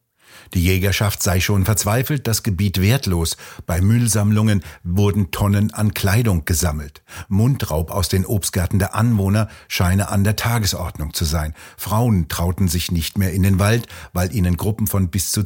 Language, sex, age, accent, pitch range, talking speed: German, male, 60-79, German, 90-110 Hz, 160 wpm